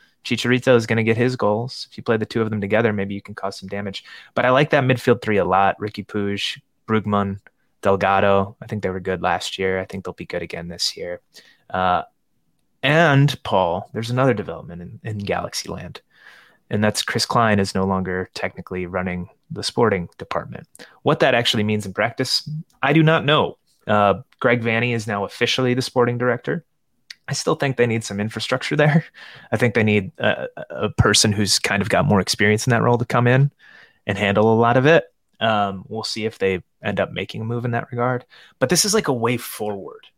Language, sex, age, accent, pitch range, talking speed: English, male, 20-39, American, 100-125 Hz, 210 wpm